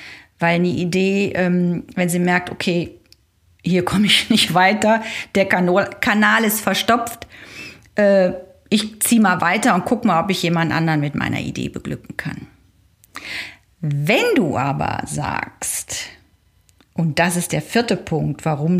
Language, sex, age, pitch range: German, female, 40-59, 155-210 Hz